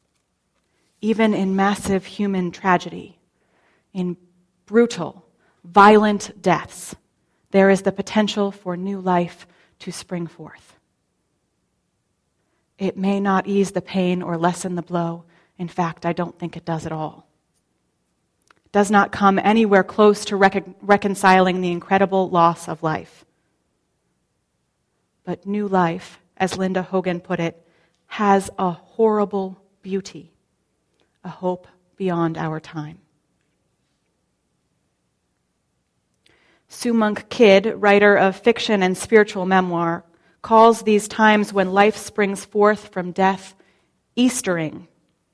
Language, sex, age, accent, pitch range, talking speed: English, female, 30-49, American, 180-205 Hz, 115 wpm